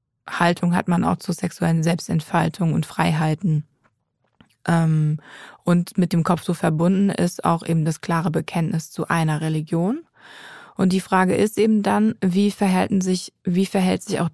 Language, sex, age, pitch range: German, female, 20-39, 170-200 Hz